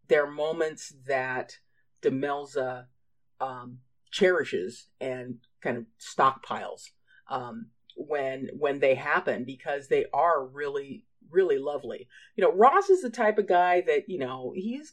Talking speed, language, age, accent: 135 wpm, English, 40-59, American